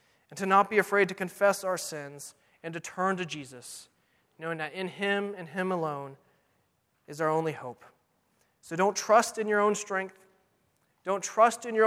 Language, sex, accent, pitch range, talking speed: English, male, American, 150-190 Hz, 180 wpm